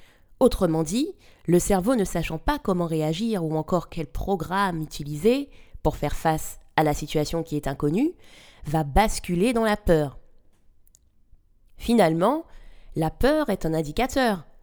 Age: 20-39